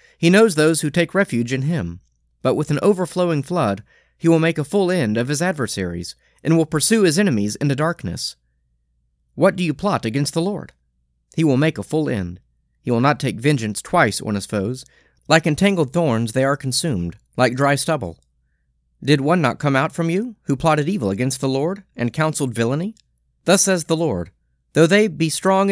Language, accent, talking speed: English, American, 200 wpm